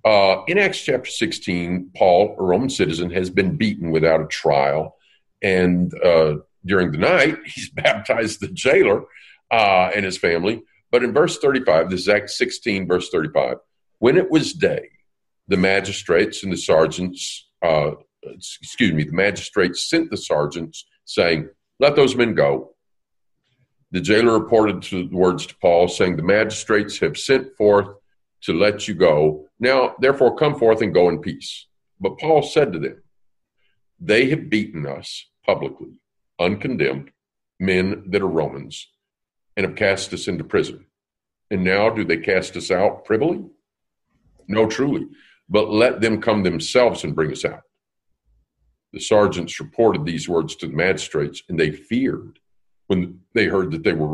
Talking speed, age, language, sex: 155 wpm, 50-69, English, male